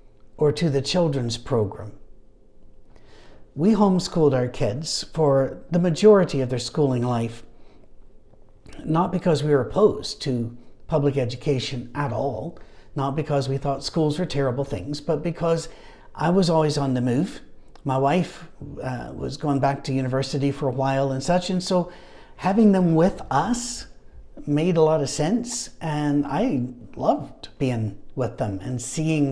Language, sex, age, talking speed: English, male, 60-79, 150 wpm